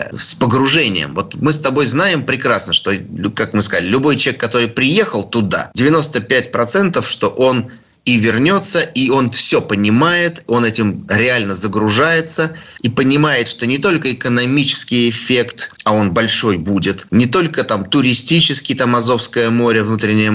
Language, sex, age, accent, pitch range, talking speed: Russian, male, 30-49, native, 110-150 Hz, 145 wpm